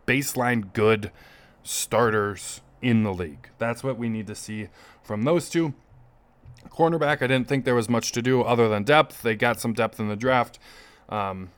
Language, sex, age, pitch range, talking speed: English, male, 20-39, 110-125 Hz, 180 wpm